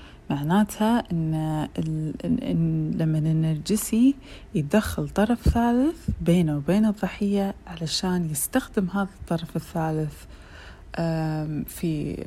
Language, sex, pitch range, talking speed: Arabic, female, 160-190 Hz, 85 wpm